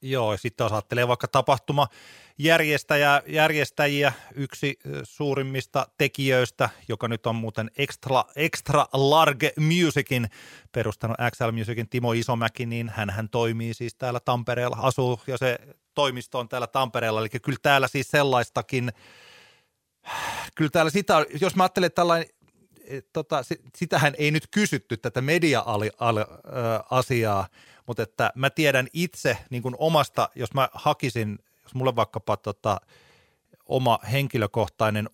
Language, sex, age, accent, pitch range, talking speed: Finnish, male, 30-49, native, 105-140 Hz, 130 wpm